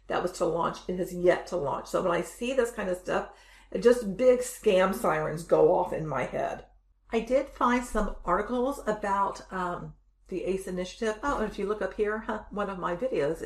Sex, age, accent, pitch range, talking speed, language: female, 50-69, American, 185-245 Hz, 210 wpm, English